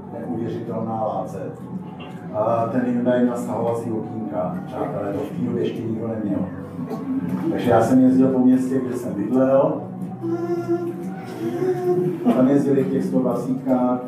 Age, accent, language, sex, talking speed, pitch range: 50-69, native, Czech, male, 125 wpm, 125-160 Hz